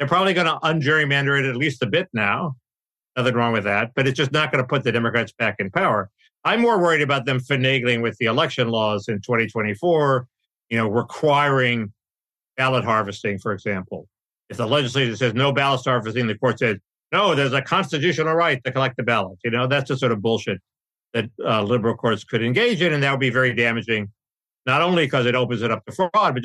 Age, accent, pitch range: 50-69, American, 115-150 Hz